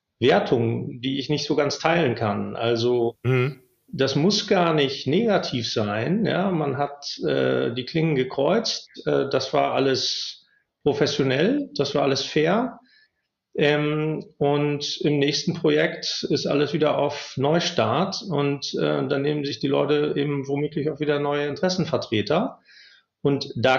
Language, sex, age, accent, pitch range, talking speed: German, male, 40-59, German, 130-155 Hz, 140 wpm